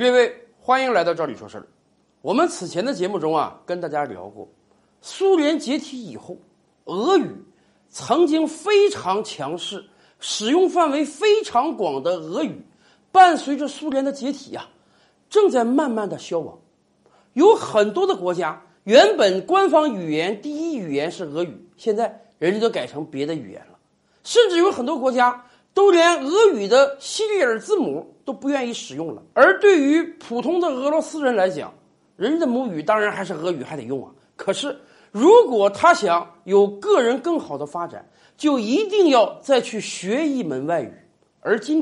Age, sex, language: 50-69, male, Chinese